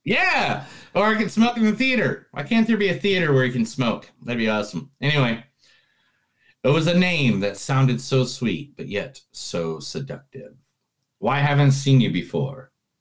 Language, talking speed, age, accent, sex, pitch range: English, 185 wpm, 40-59, American, male, 110-145 Hz